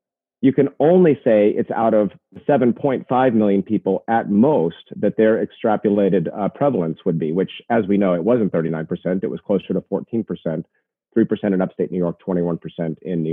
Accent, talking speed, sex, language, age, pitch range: American, 175 wpm, male, English, 40-59, 95-120 Hz